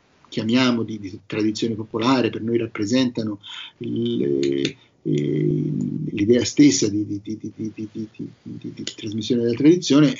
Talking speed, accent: 140 wpm, native